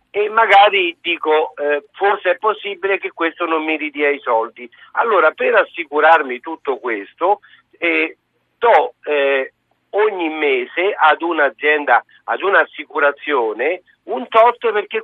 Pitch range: 155-220 Hz